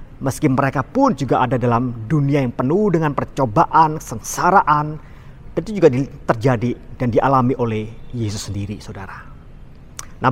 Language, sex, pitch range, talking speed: Indonesian, male, 130-180 Hz, 130 wpm